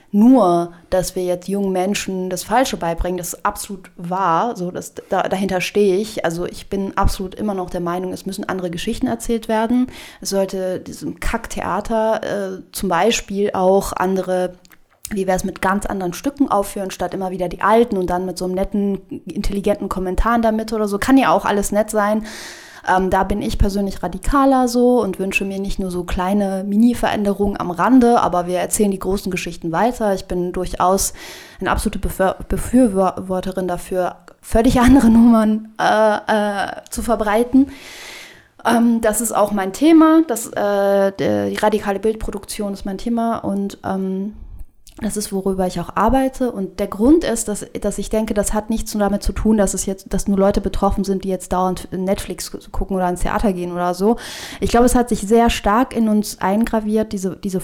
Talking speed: 185 wpm